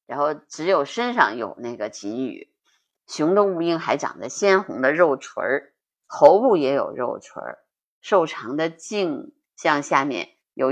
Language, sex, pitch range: Chinese, female, 155-225 Hz